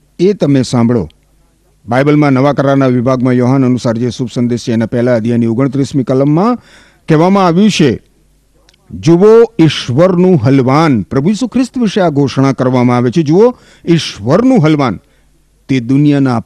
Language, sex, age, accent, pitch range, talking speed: Gujarati, male, 50-69, native, 90-145 Hz, 110 wpm